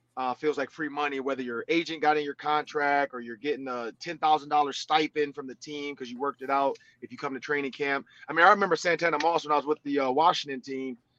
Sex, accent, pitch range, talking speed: male, American, 135-165 Hz, 245 wpm